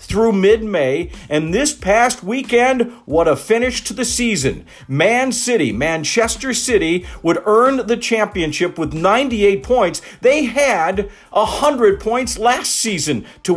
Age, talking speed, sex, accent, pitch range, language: 50-69, 135 wpm, male, American, 170-230 Hz, English